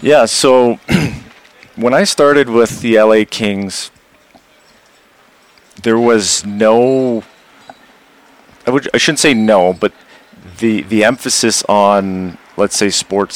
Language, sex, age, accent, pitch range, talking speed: English, male, 30-49, American, 95-110 Hz, 115 wpm